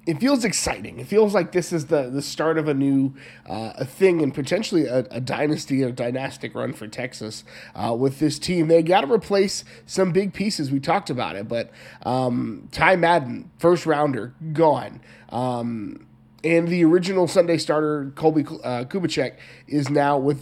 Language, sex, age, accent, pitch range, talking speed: English, male, 20-39, American, 130-175 Hz, 180 wpm